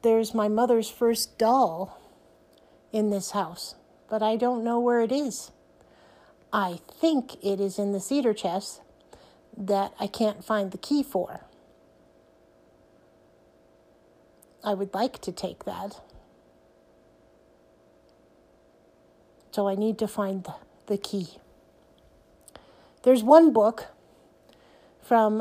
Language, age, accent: English, 50-69, American